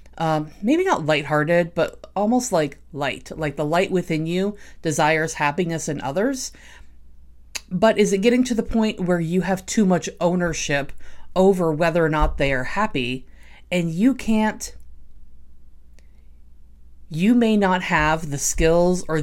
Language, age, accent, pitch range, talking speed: English, 30-49, American, 145-185 Hz, 145 wpm